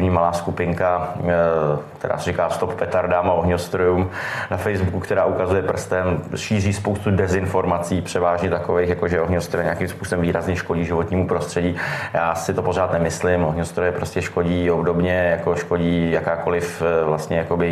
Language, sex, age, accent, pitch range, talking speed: Czech, male, 20-39, native, 85-90 Hz, 140 wpm